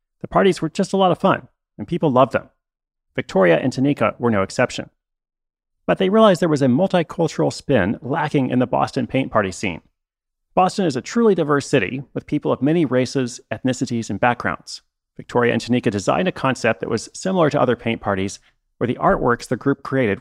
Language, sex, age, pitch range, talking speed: English, male, 30-49, 115-150 Hz, 195 wpm